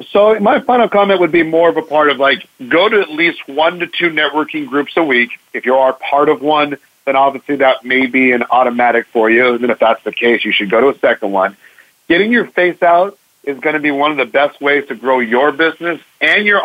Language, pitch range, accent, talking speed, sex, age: English, 135-170 Hz, American, 250 wpm, male, 40-59